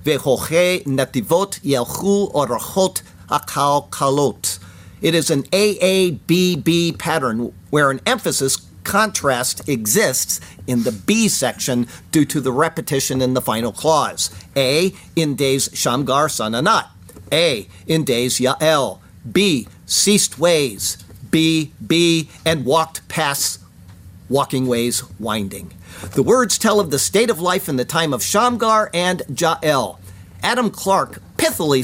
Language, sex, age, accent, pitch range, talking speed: English, male, 50-69, American, 130-190 Hz, 125 wpm